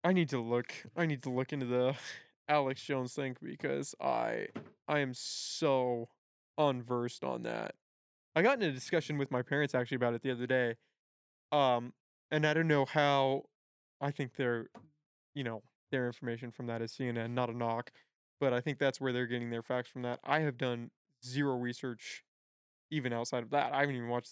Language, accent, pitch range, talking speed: English, American, 120-150 Hz, 195 wpm